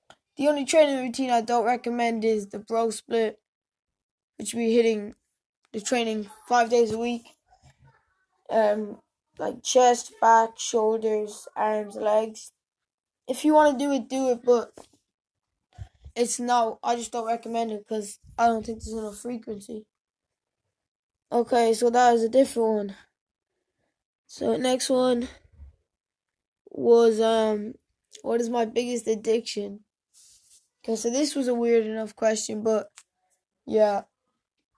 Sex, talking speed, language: female, 135 wpm, English